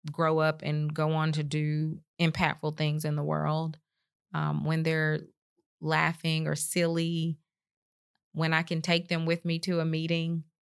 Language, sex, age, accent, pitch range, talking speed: English, female, 30-49, American, 155-185 Hz, 160 wpm